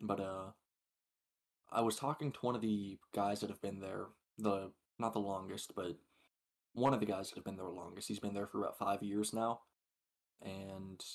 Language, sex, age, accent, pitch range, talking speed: English, male, 20-39, American, 100-115 Hz, 205 wpm